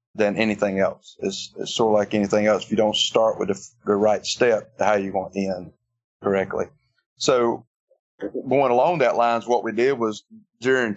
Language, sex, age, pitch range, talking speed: English, male, 30-49, 105-120 Hz, 190 wpm